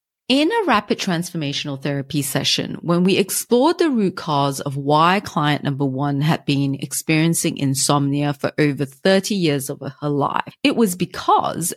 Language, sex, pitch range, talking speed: English, female, 145-200 Hz, 160 wpm